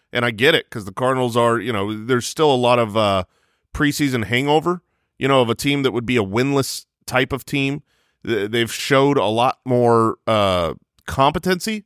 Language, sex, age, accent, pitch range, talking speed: English, male, 30-49, American, 120-170 Hz, 190 wpm